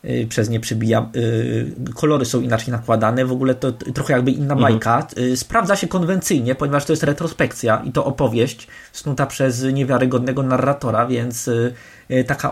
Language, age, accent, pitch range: Polish, 20-39, native, 125-160 Hz